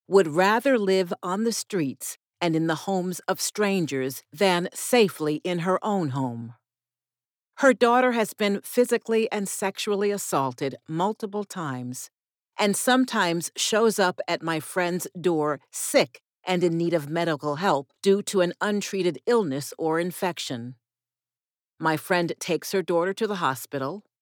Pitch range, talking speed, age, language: 145-210 Hz, 145 wpm, 50-69, English